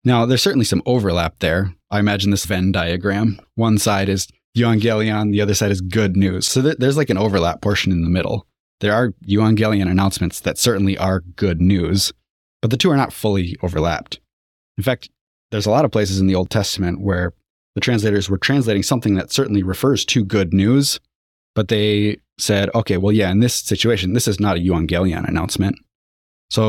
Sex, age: male, 20-39